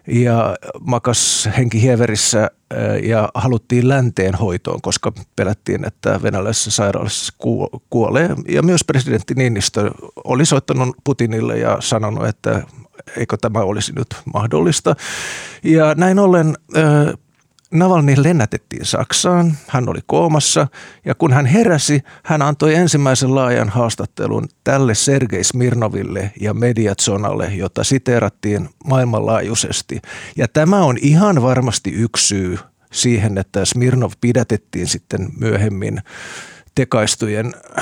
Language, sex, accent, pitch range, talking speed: Finnish, male, native, 110-140 Hz, 110 wpm